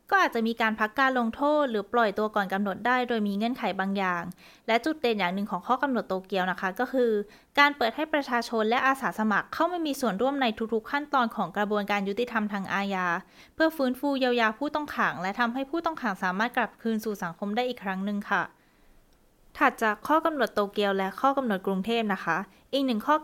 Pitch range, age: 195-250 Hz, 20-39